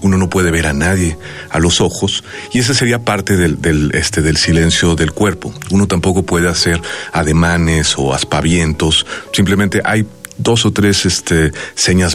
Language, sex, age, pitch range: Spanish, male, 40-59, 80-105 Hz